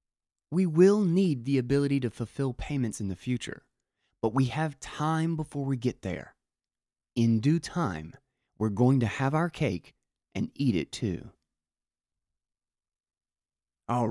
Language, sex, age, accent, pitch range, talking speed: English, male, 30-49, American, 100-130 Hz, 140 wpm